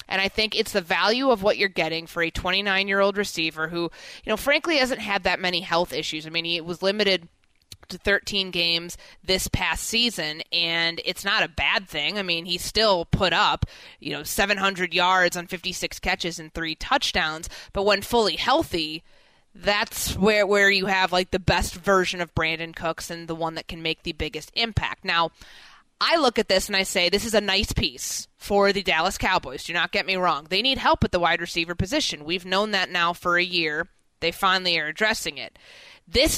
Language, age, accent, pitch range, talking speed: English, 20-39, American, 170-205 Hz, 205 wpm